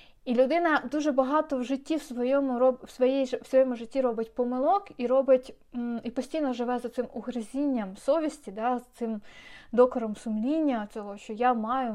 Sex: female